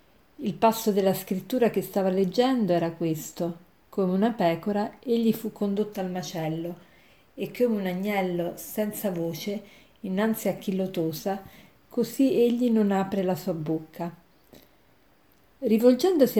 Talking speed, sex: 130 wpm, female